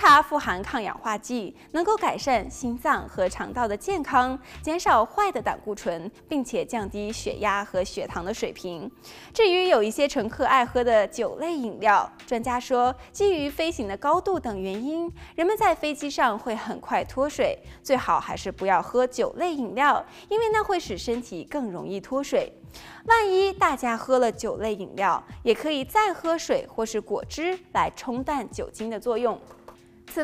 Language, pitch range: Chinese, 215-345 Hz